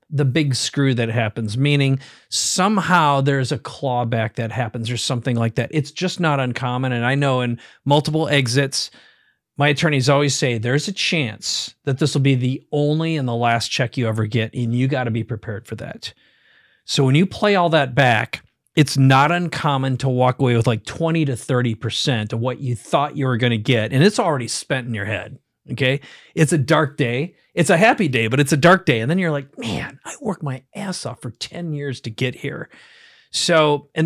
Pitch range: 120-150 Hz